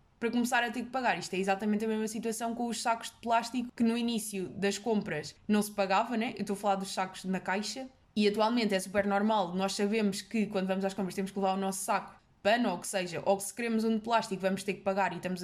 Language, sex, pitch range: Portuguese, female, 195-240 Hz